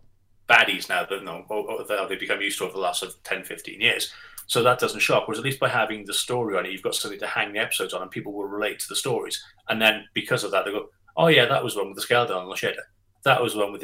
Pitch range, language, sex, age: 100-110 Hz, English, male, 30-49